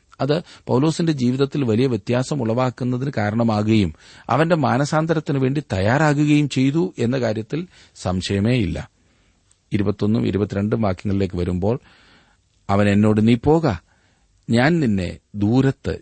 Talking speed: 95 wpm